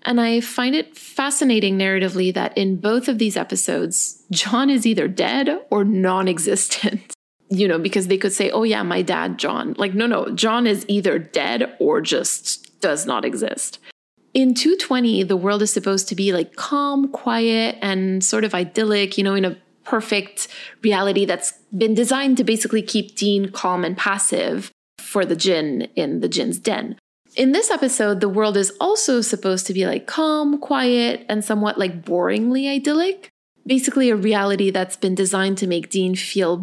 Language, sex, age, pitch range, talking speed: English, female, 20-39, 195-250 Hz, 175 wpm